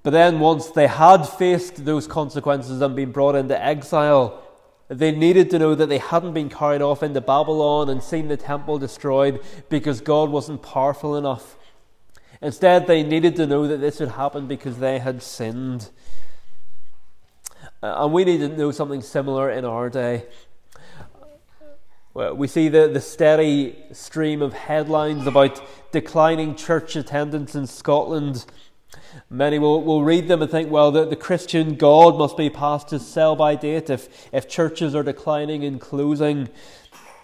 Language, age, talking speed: English, 20-39, 160 wpm